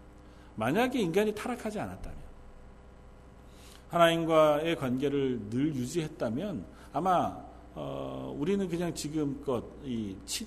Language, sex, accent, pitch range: Korean, male, native, 105-160 Hz